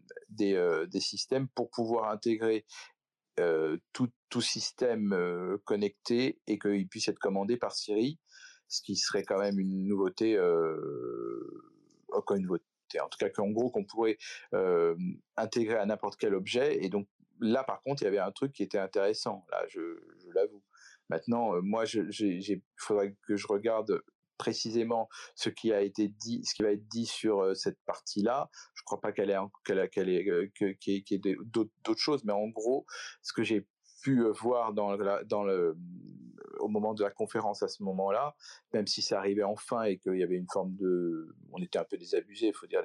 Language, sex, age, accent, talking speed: French, male, 40-59, French, 190 wpm